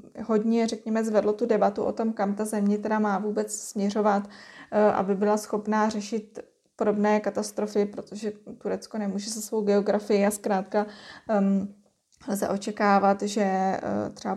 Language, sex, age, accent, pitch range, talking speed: Czech, female, 20-39, native, 200-220 Hz, 140 wpm